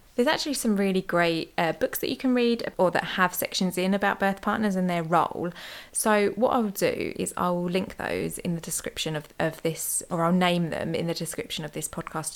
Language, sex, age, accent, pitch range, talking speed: English, female, 20-39, British, 165-210 Hz, 225 wpm